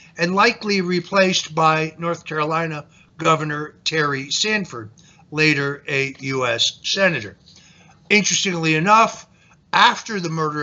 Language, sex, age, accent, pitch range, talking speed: English, male, 60-79, American, 150-180 Hz, 100 wpm